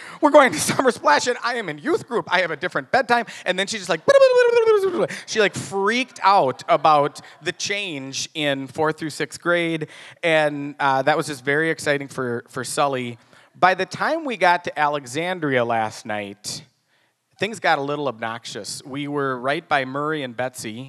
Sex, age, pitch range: male, 30-49, 120-160 Hz